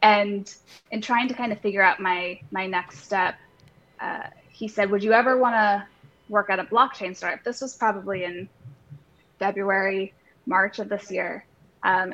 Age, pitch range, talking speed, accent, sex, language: 10-29, 185-215 Hz, 175 wpm, American, female, English